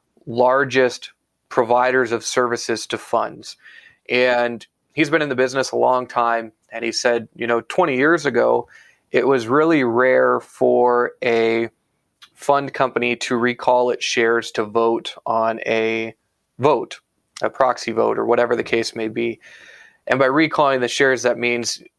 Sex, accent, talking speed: male, American, 155 wpm